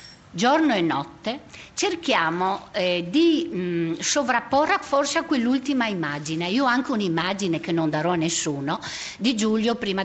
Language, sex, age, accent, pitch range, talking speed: Italian, female, 50-69, native, 180-275 Hz, 135 wpm